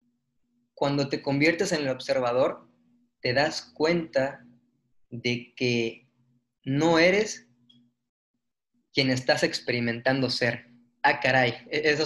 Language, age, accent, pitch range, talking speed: Spanish, 20-39, Mexican, 125-165 Hz, 100 wpm